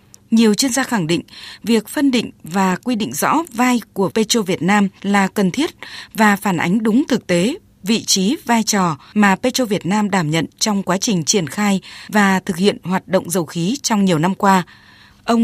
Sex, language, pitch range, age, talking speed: female, Vietnamese, 185-235 Hz, 20-39, 205 wpm